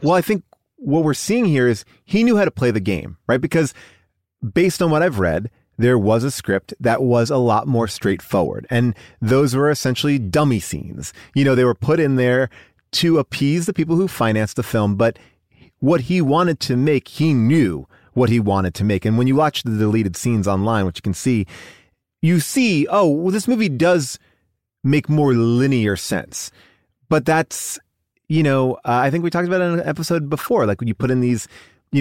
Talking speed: 210 wpm